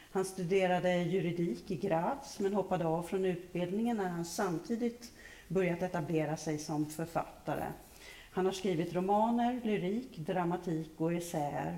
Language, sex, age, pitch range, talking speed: Swedish, female, 40-59, 160-195 Hz, 130 wpm